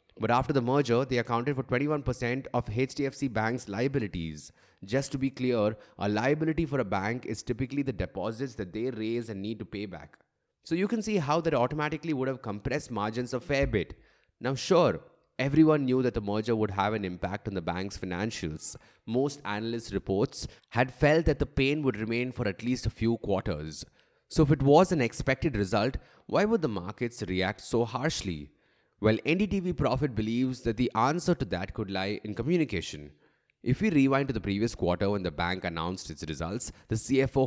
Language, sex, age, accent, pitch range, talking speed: English, male, 30-49, Indian, 100-135 Hz, 190 wpm